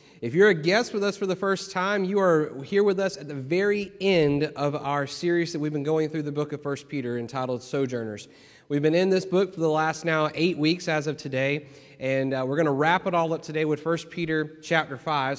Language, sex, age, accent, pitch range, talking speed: English, male, 30-49, American, 130-160 Hz, 245 wpm